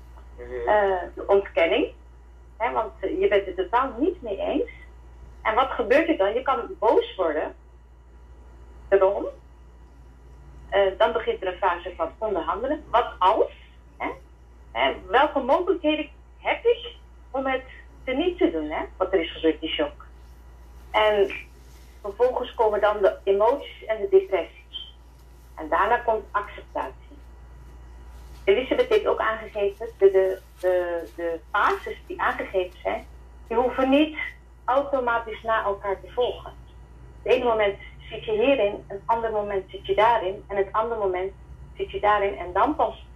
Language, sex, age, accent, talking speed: Dutch, female, 40-59, Dutch, 150 wpm